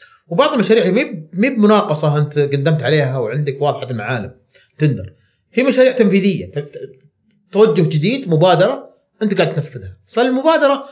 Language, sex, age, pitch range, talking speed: Arabic, male, 30-49, 130-210 Hz, 120 wpm